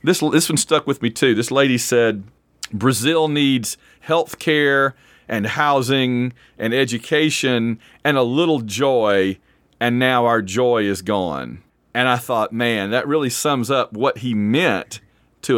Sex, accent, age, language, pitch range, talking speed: male, American, 40-59, English, 115-150 Hz, 155 wpm